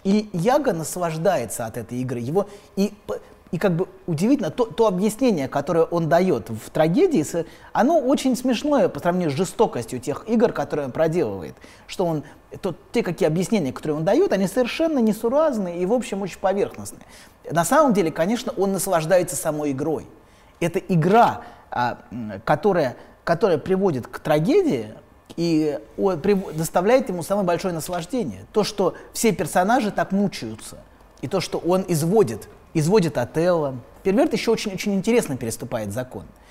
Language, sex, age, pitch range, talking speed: Russian, male, 20-39, 155-215 Hz, 145 wpm